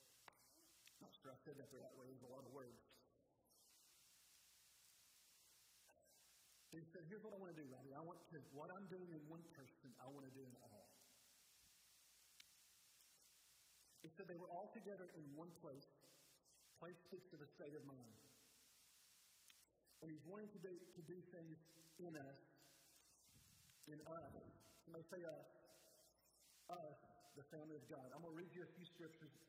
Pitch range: 130-155 Hz